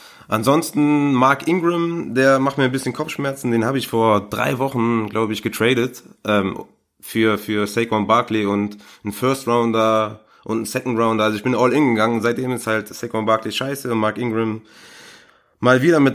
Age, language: 20-39, German